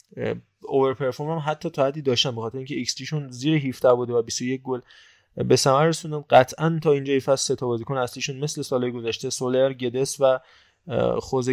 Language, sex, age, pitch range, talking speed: Persian, male, 20-39, 125-150 Hz, 175 wpm